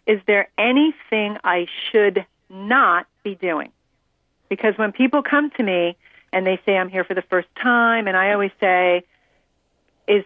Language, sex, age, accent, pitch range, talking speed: English, female, 40-59, American, 195-235 Hz, 165 wpm